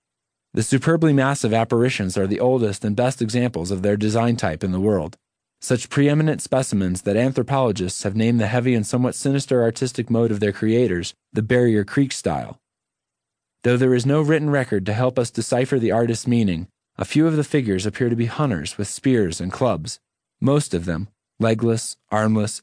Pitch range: 100-125 Hz